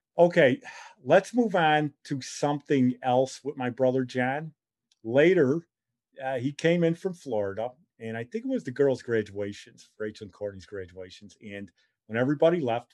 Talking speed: 160 wpm